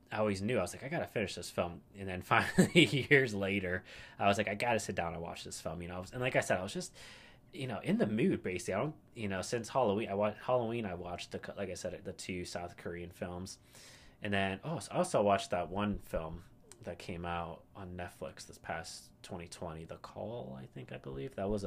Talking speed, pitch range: 240 wpm, 90-120 Hz